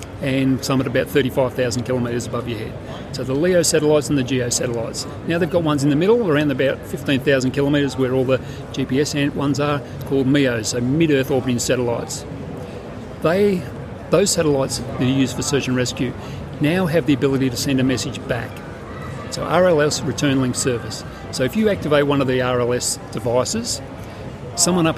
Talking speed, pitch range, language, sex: 180 wpm, 125-150 Hz, English, male